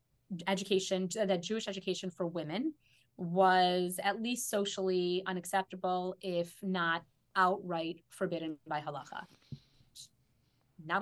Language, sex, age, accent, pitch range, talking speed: English, female, 30-49, American, 170-200 Hz, 100 wpm